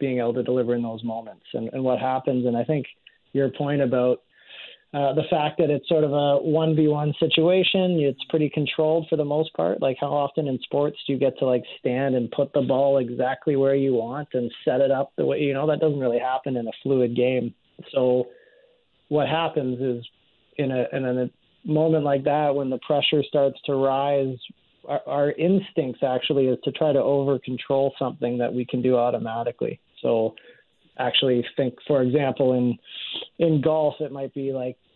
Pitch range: 125-150 Hz